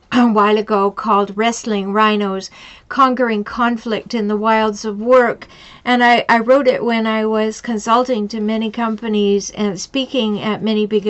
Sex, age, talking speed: female, 50-69, 160 wpm